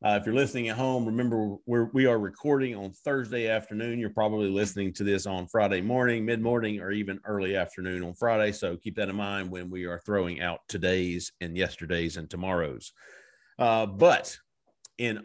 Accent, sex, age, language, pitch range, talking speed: American, male, 50-69, English, 95-115 Hz, 180 wpm